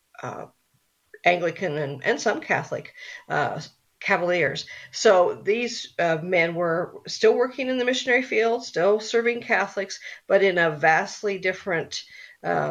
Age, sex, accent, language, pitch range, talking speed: 50-69, female, American, English, 160-220 Hz, 130 wpm